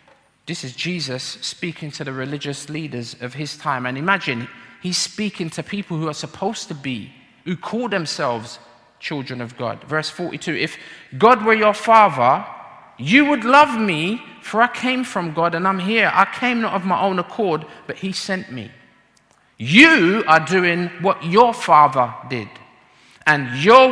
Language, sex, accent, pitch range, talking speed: English, male, British, 140-215 Hz, 170 wpm